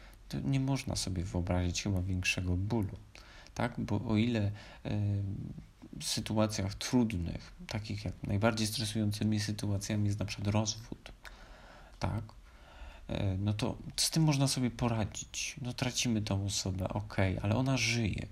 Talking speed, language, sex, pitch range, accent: 140 wpm, Polish, male, 90-130 Hz, native